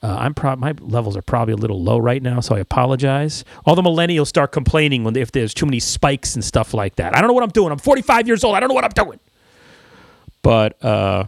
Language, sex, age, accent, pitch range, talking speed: English, male, 30-49, American, 105-135 Hz, 255 wpm